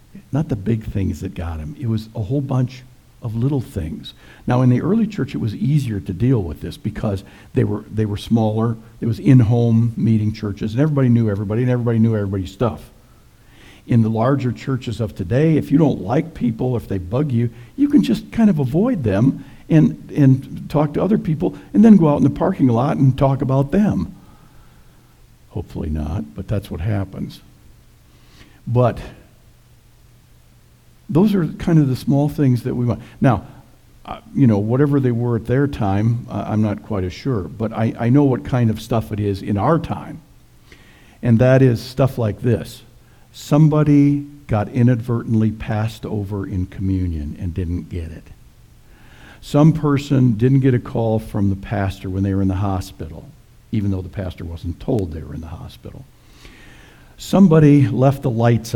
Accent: American